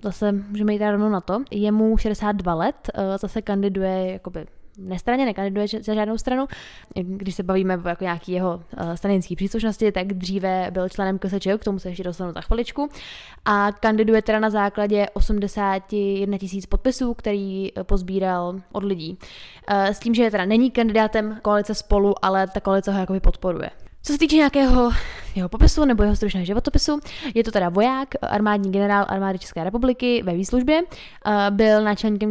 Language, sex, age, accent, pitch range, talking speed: Czech, female, 10-29, native, 190-215 Hz, 160 wpm